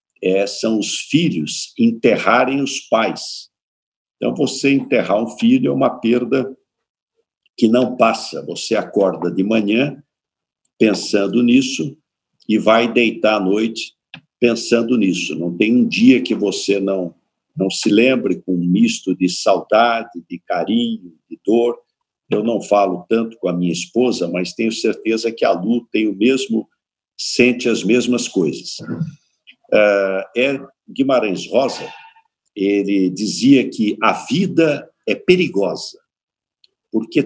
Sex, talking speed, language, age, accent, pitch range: male, 130 wpm, Portuguese, 50-69, Brazilian, 105-150 Hz